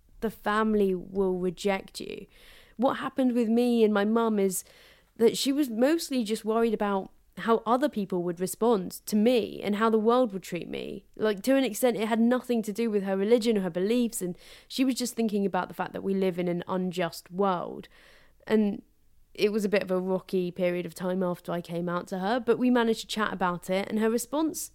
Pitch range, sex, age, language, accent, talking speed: 185-230 Hz, female, 20-39, English, British, 220 wpm